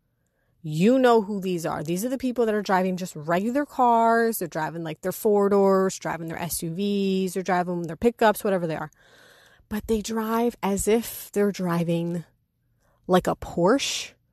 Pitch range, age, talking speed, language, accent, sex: 170-205 Hz, 30-49, 170 wpm, English, American, female